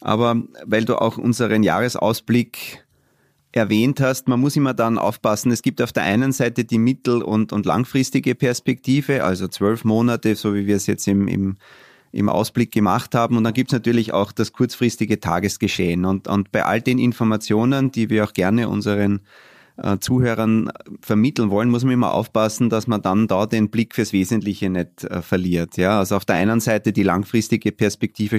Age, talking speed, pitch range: 30-49, 180 wpm, 100-125 Hz